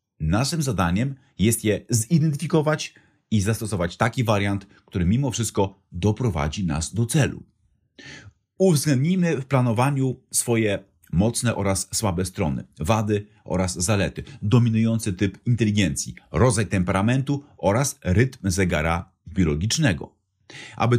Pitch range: 95-130 Hz